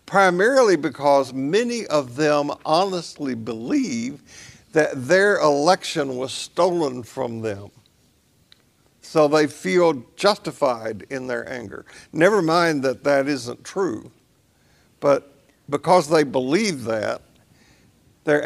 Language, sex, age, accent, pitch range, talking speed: English, male, 60-79, American, 130-160 Hz, 105 wpm